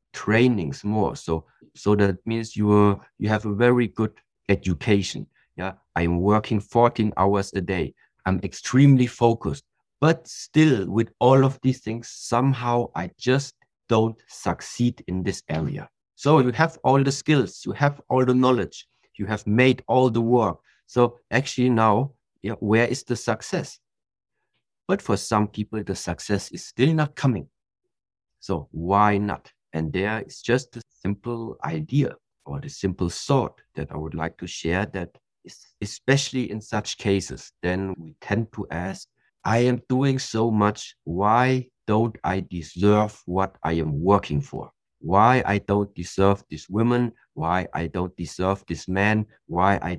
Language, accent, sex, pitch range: Chinese, German, male, 95-120 Hz